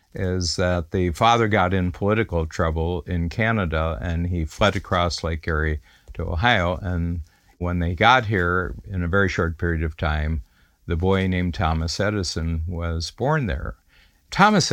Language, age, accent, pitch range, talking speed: English, 60-79, American, 85-100 Hz, 160 wpm